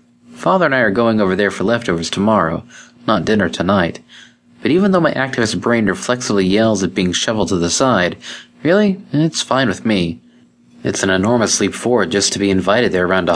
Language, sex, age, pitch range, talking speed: English, male, 30-49, 85-105 Hz, 200 wpm